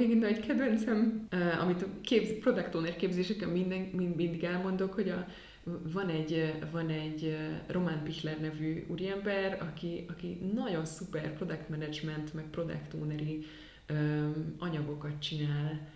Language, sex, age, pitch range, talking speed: Hungarian, female, 20-39, 155-180 Hz, 130 wpm